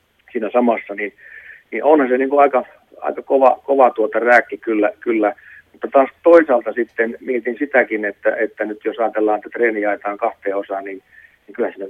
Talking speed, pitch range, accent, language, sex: 180 wpm, 105-125 Hz, native, Finnish, male